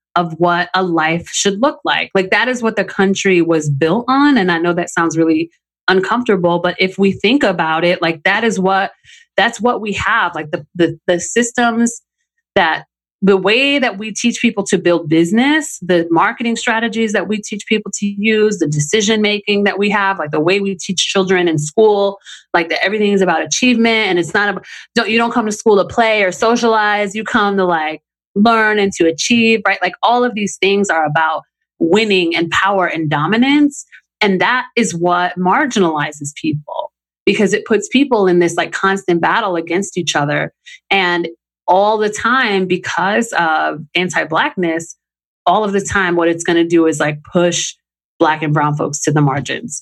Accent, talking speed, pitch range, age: American, 190 wpm, 165-215 Hz, 30-49